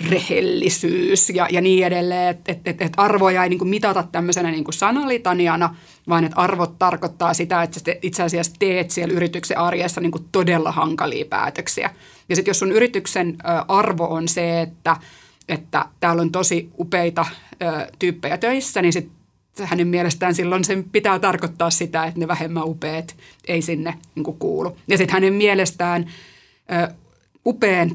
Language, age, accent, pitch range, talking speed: Finnish, 30-49, native, 165-185 Hz, 155 wpm